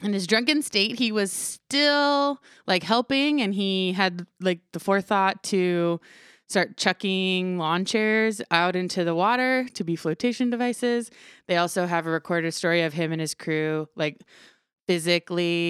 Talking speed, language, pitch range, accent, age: 155 wpm, English, 165-210 Hz, American, 20-39